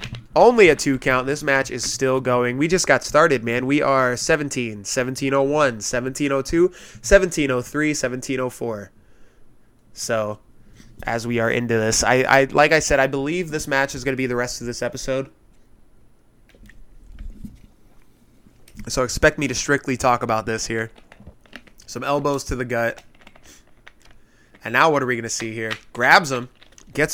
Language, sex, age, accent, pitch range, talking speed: English, male, 20-39, American, 120-155 Hz, 155 wpm